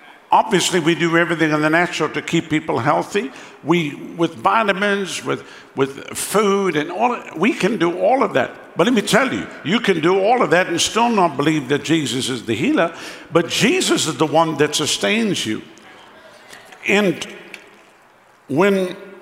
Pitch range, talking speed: 155-195 Hz, 170 wpm